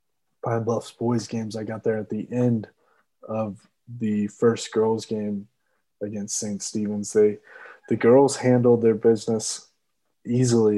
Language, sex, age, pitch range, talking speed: English, male, 20-39, 105-130 Hz, 140 wpm